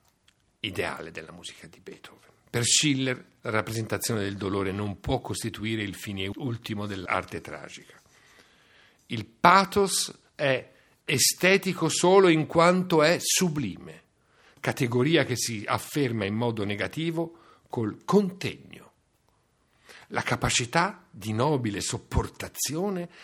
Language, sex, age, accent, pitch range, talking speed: Italian, male, 50-69, native, 105-160 Hz, 110 wpm